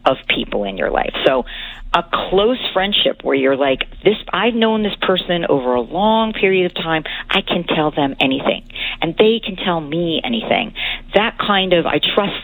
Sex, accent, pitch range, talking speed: female, American, 150-185 Hz, 190 wpm